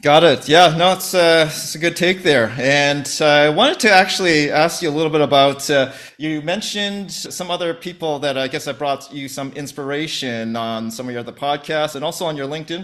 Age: 30-49